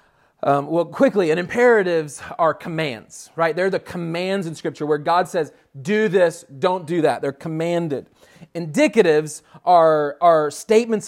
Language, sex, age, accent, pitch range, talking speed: English, male, 30-49, American, 155-210 Hz, 145 wpm